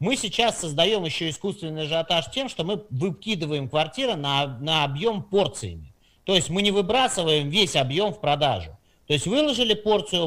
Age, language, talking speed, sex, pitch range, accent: 40-59, Russian, 165 wpm, male, 140-205 Hz, native